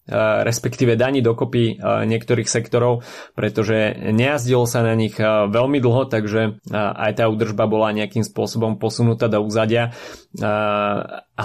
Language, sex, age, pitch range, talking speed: Slovak, male, 20-39, 105-120 Hz, 120 wpm